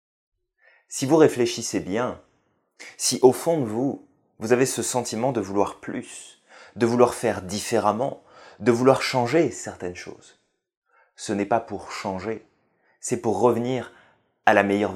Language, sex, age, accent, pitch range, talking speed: French, male, 20-39, French, 105-135 Hz, 145 wpm